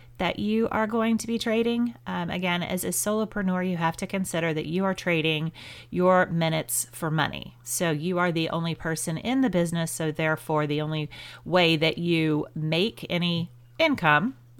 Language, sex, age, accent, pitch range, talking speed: English, female, 30-49, American, 150-185 Hz, 175 wpm